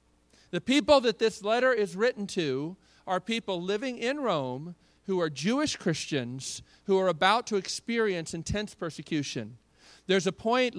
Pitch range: 150-220 Hz